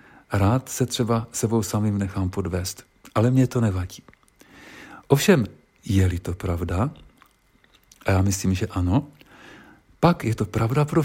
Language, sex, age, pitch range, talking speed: Czech, male, 50-69, 95-130 Hz, 135 wpm